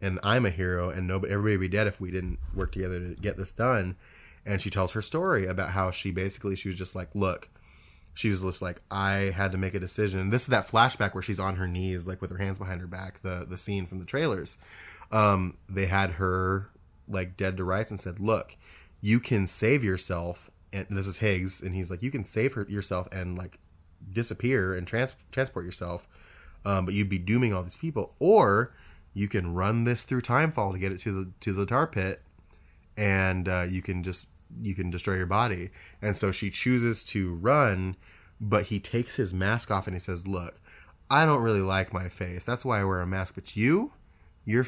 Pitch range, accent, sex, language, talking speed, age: 90-105 Hz, American, male, English, 220 wpm, 20-39